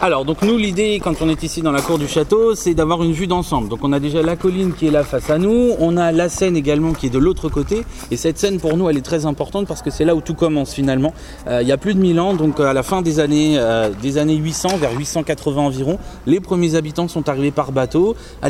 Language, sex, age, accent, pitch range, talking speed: French, male, 30-49, French, 140-175 Hz, 280 wpm